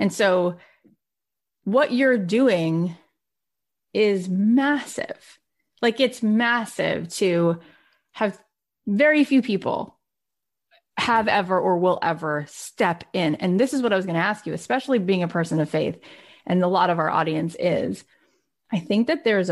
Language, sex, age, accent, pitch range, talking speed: English, female, 30-49, American, 170-220 Hz, 150 wpm